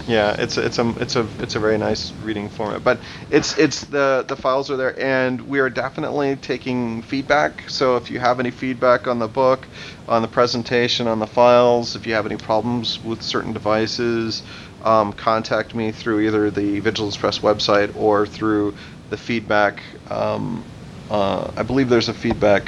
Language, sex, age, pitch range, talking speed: English, male, 30-49, 105-120 Hz, 185 wpm